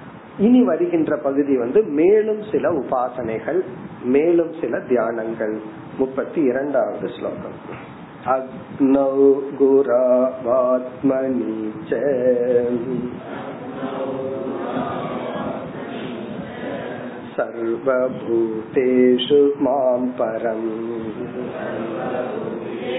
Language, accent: Tamil, native